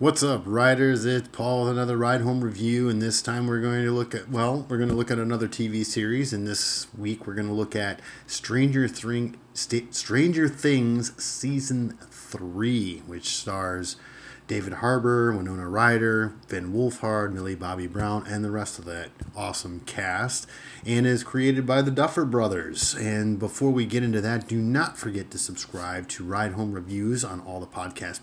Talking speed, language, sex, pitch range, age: 180 wpm, English, male, 105-130 Hz, 30-49